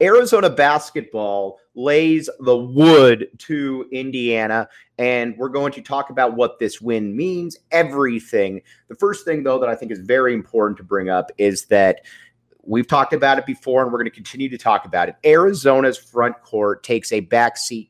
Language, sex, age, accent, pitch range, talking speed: English, male, 30-49, American, 110-140 Hz, 180 wpm